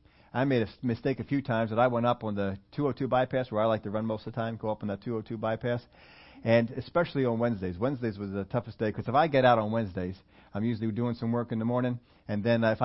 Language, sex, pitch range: English, male, 105-130 Hz